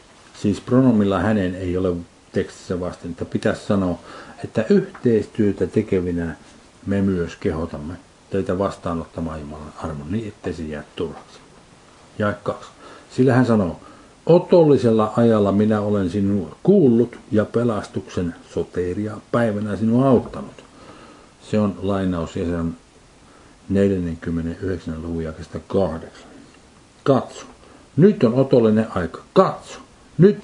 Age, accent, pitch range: 60-79, native, 90-120 Hz